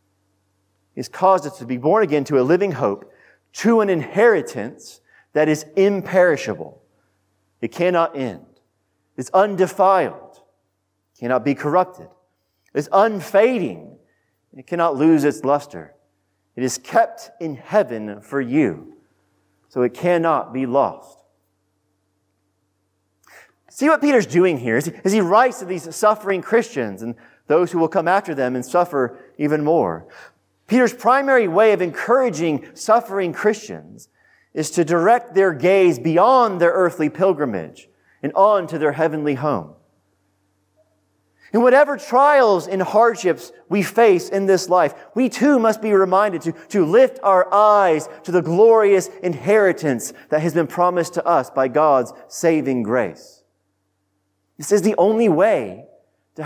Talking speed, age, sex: 140 wpm, 40-59, male